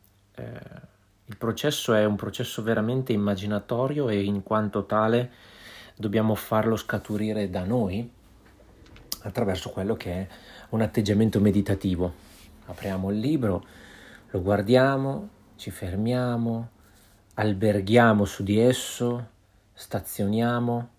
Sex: male